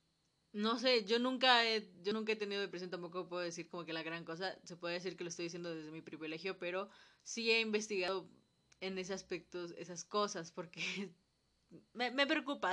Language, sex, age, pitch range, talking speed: Spanish, female, 20-39, 175-210 Hz, 195 wpm